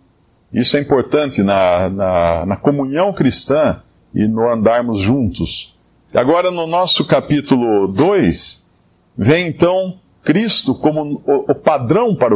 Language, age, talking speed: Portuguese, 50-69, 120 wpm